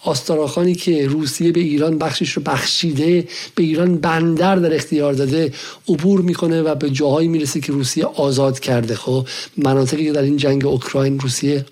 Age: 50-69